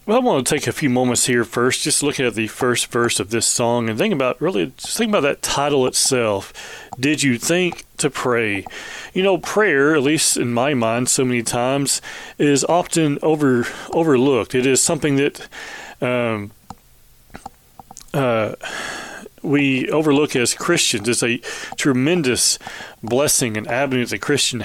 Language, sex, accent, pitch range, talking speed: English, male, American, 115-145 Hz, 165 wpm